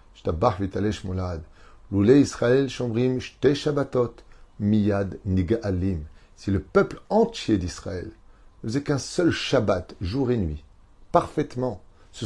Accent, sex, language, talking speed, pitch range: French, male, French, 80 wpm, 95-125 Hz